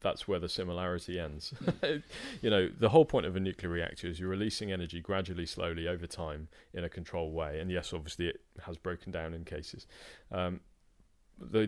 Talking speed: 190 wpm